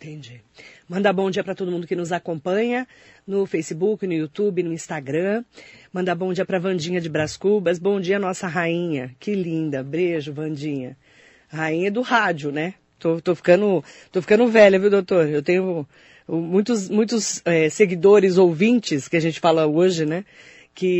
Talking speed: 170 wpm